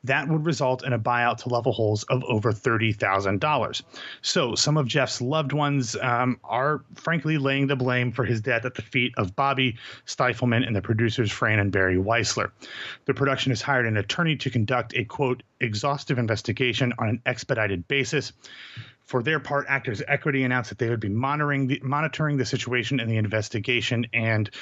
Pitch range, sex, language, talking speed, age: 115-140 Hz, male, English, 185 wpm, 30-49